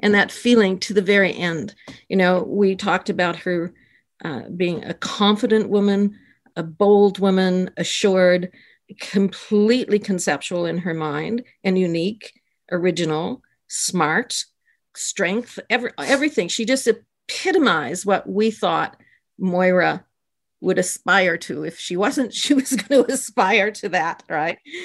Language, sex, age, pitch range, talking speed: English, female, 50-69, 180-235 Hz, 135 wpm